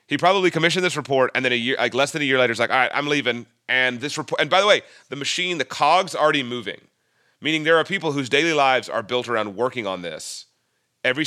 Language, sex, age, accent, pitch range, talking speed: English, male, 30-49, American, 110-150 Hz, 255 wpm